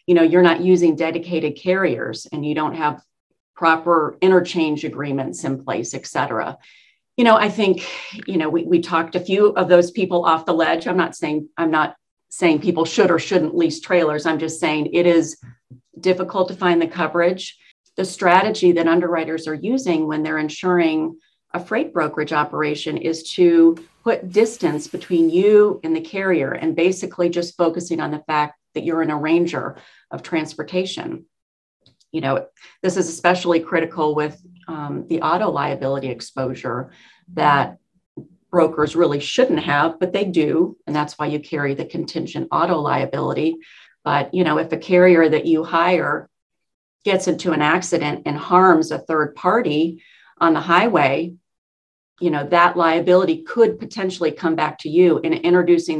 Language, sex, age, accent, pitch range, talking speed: English, female, 40-59, American, 155-180 Hz, 165 wpm